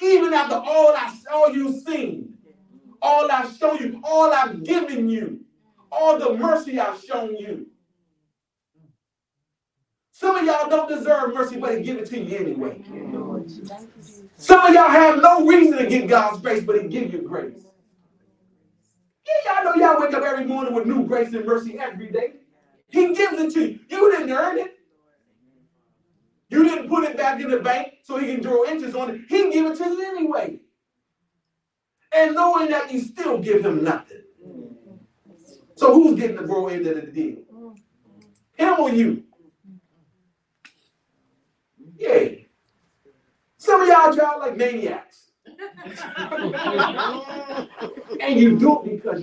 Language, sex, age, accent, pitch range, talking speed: English, male, 40-59, American, 205-320 Hz, 155 wpm